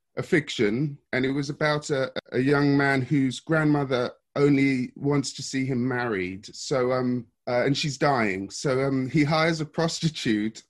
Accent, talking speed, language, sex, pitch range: British, 170 wpm, English, male, 115-145 Hz